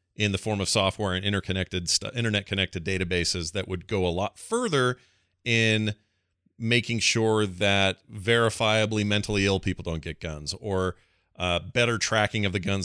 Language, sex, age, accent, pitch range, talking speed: English, male, 40-59, American, 90-110 Hz, 155 wpm